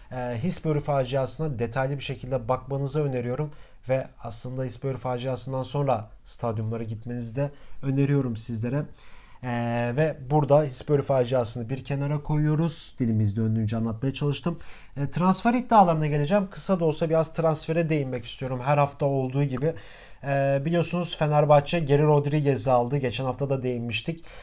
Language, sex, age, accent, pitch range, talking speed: German, male, 30-49, Turkish, 130-170 Hz, 135 wpm